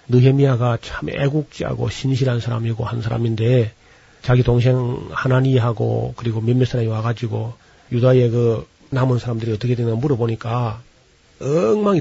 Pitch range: 115-135 Hz